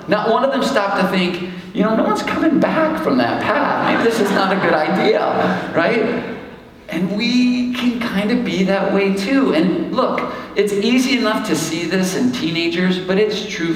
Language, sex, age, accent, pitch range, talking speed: English, male, 50-69, American, 145-195 Hz, 195 wpm